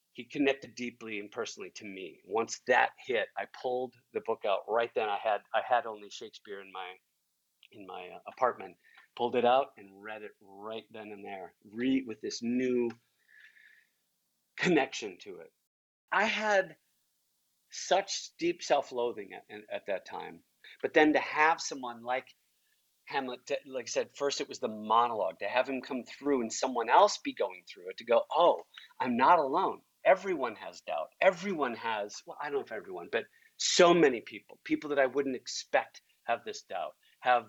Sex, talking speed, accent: male, 180 wpm, American